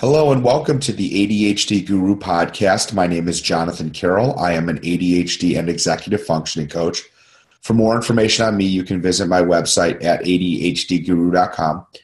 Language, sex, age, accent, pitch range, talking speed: English, male, 30-49, American, 80-90 Hz, 165 wpm